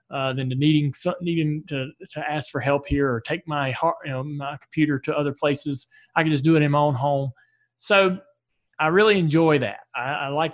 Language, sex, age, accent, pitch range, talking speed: English, male, 20-39, American, 140-170 Hz, 235 wpm